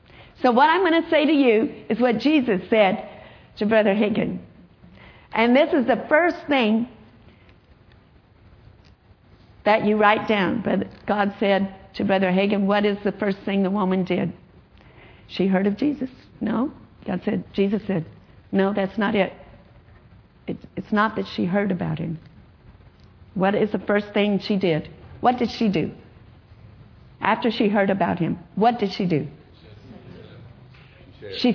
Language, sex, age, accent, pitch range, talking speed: English, female, 50-69, American, 185-275 Hz, 150 wpm